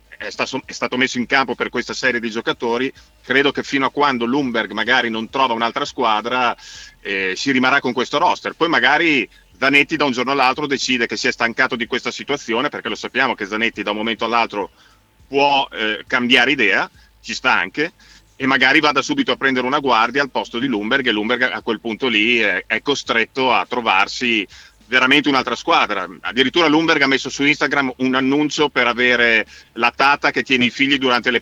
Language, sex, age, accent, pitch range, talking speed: Italian, male, 40-59, native, 120-140 Hz, 195 wpm